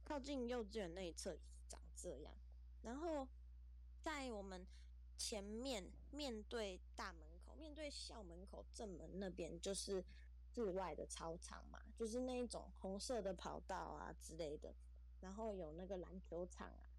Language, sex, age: Chinese, female, 20-39